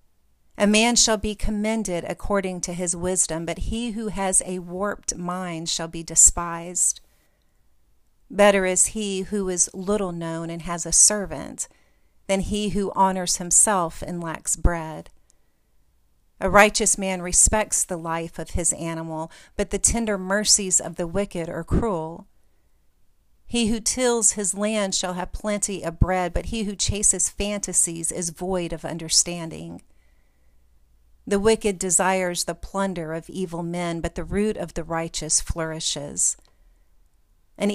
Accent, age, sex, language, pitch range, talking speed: American, 40-59, female, English, 165-200 Hz, 145 wpm